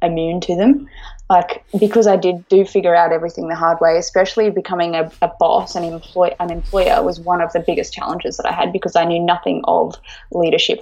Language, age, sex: English, 20-39, female